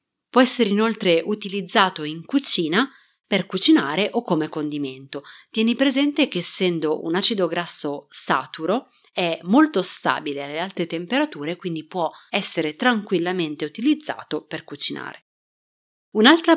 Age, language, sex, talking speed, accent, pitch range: 30-49, Italian, female, 120 wpm, native, 160-235 Hz